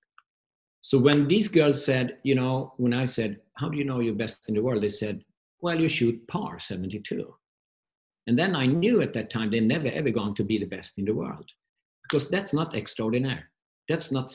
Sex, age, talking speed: male, 50-69, 210 wpm